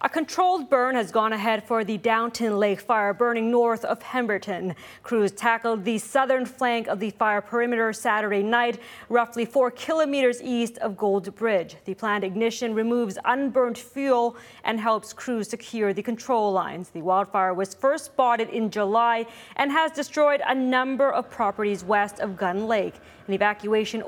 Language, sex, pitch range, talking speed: English, female, 215-255 Hz, 165 wpm